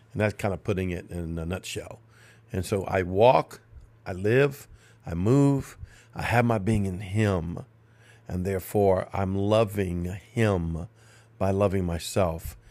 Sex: male